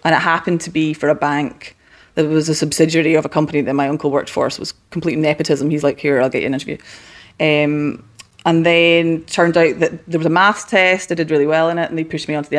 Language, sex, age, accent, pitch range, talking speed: English, female, 20-39, British, 155-190 Hz, 265 wpm